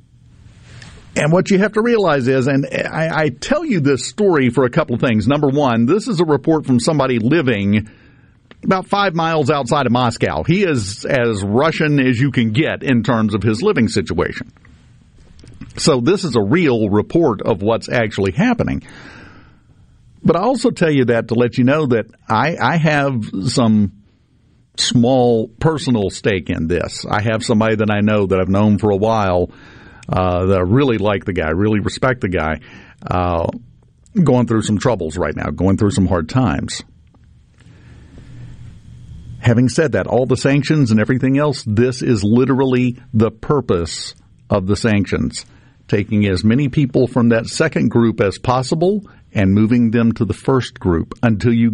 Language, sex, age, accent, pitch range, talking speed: English, male, 50-69, American, 110-140 Hz, 170 wpm